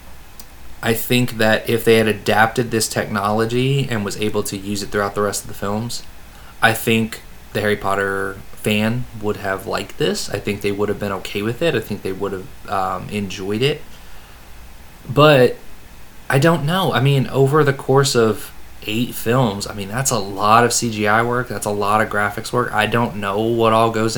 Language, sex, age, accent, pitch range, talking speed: English, male, 20-39, American, 100-125 Hz, 200 wpm